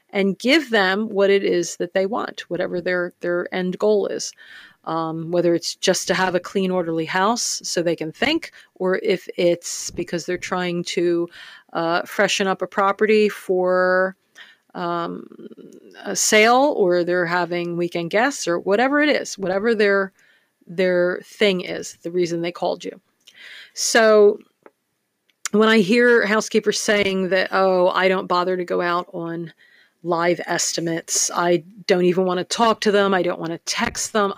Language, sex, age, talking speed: English, female, 40-59, 165 wpm